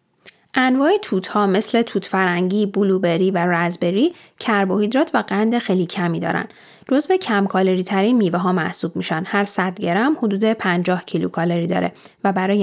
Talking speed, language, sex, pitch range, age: 160 wpm, Persian, female, 175-230 Hz, 10-29